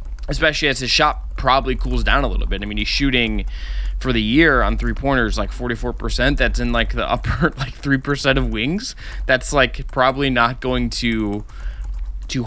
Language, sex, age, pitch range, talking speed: English, male, 20-39, 110-135 Hz, 180 wpm